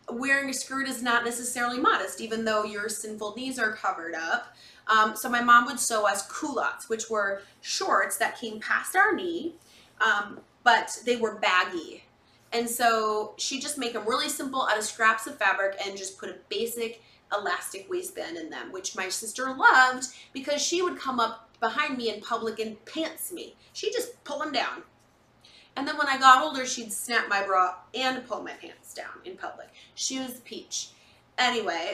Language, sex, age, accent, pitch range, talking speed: English, female, 30-49, American, 205-265 Hz, 190 wpm